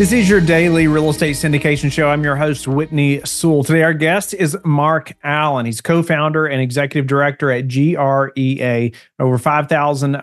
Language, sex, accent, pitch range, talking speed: English, male, American, 130-145 Hz, 165 wpm